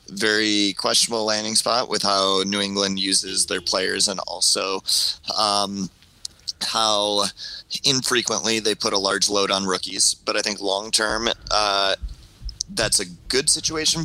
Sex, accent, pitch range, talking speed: male, American, 95-115 Hz, 140 wpm